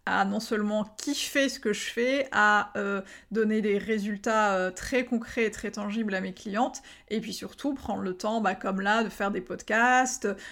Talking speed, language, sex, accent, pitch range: 200 wpm, French, female, French, 200-240 Hz